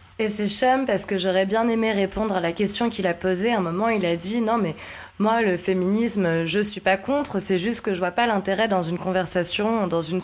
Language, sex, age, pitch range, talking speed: French, female, 20-39, 180-215 Hz, 245 wpm